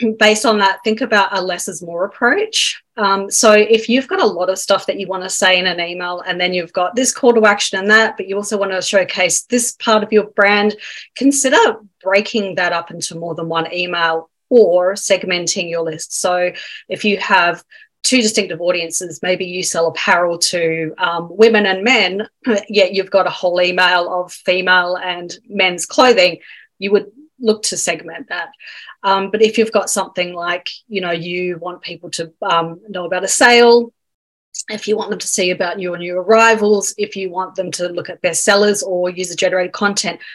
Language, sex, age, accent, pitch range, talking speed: English, female, 30-49, Australian, 180-215 Hz, 200 wpm